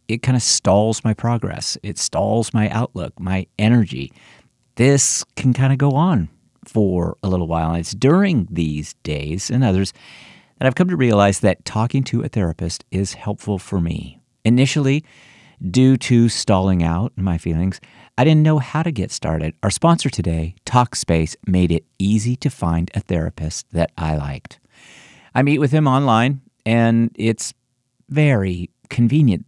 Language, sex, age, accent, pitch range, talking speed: English, male, 50-69, American, 95-130 Hz, 165 wpm